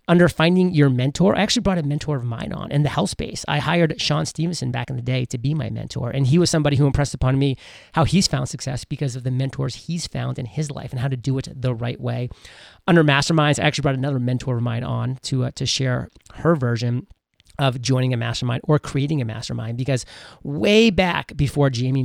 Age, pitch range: 30-49, 130-155 Hz